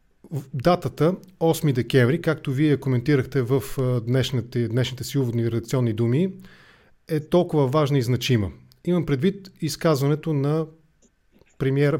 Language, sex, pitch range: English, male, 130-165 Hz